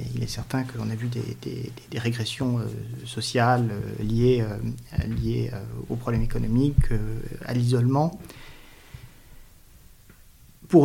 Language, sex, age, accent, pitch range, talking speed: French, male, 40-59, French, 115-135 Hz, 140 wpm